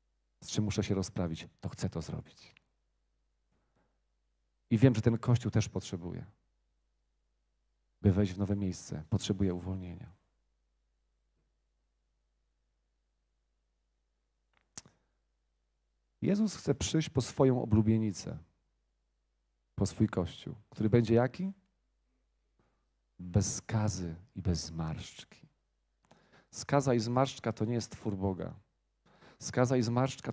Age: 40-59